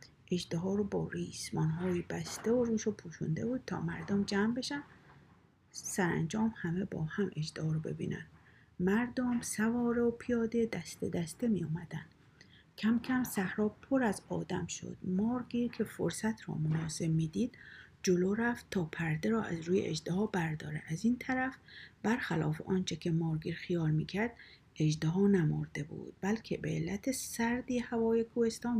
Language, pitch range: Persian, 170-230 Hz